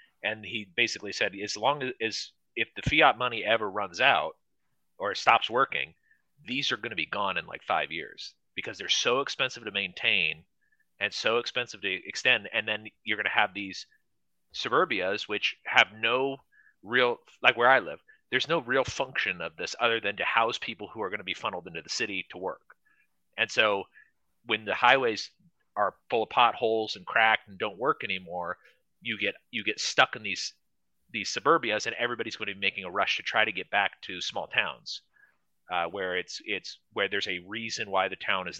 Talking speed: 200 wpm